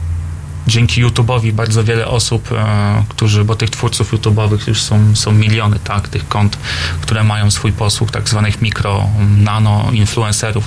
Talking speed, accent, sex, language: 145 wpm, native, male, Polish